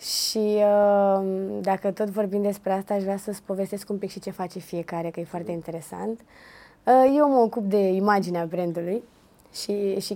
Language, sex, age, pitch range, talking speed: Romanian, female, 20-39, 190-220 Hz, 165 wpm